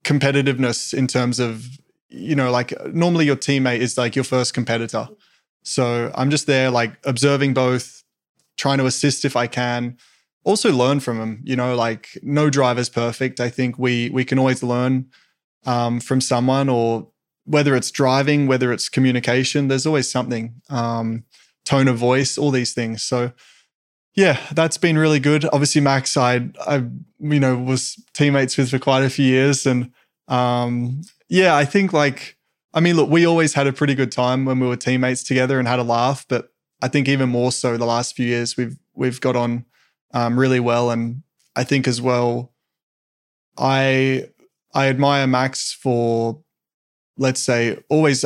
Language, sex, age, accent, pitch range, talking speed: English, male, 20-39, Australian, 120-140 Hz, 175 wpm